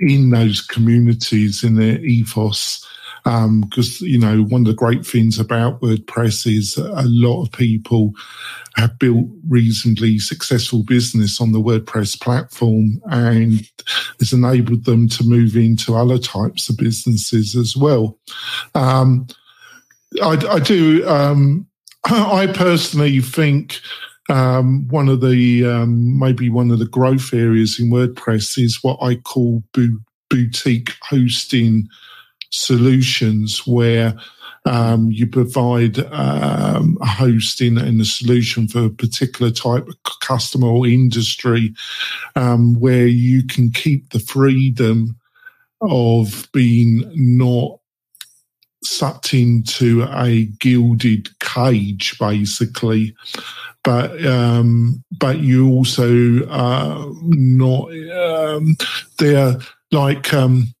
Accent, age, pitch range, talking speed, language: British, 50-69, 115-130 Hz, 115 wpm, English